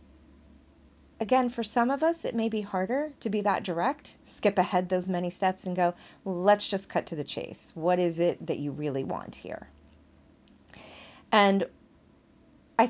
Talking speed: 170 wpm